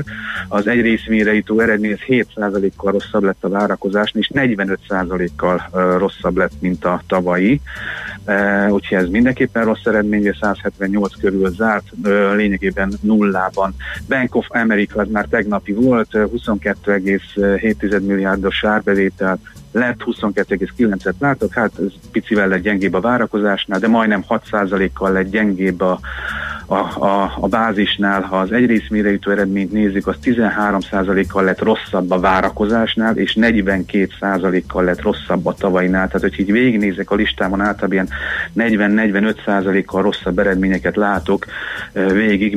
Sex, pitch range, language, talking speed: male, 95-105 Hz, Hungarian, 125 wpm